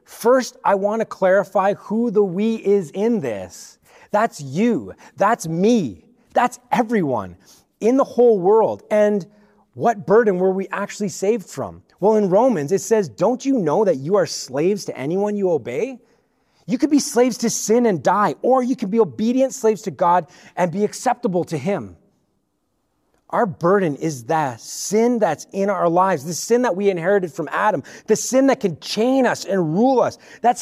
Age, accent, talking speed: 30-49, American, 180 wpm